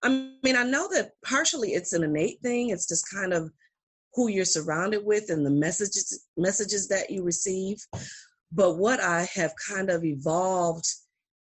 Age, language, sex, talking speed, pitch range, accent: 40-59, English, female, 165 wpm, 160-210 Hz, American